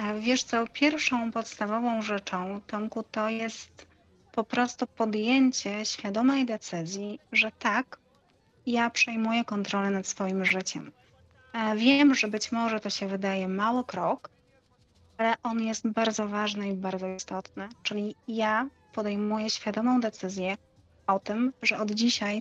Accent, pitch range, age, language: native, 195-230 Hz, 30-49, Polish